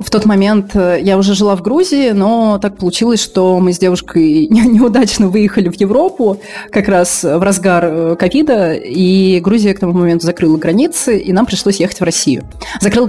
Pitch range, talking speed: 175-215 Hz, 175 wpm